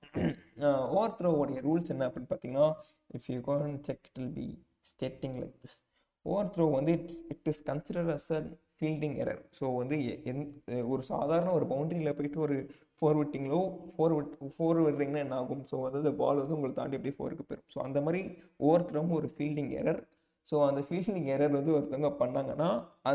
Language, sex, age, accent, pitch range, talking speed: Tamil, male, 20-39, native, 140-165 Hz, 165 wpm